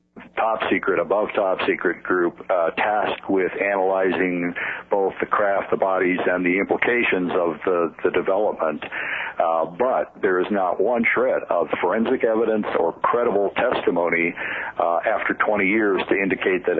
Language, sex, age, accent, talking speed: English, male, 60-79, American, 150 wpm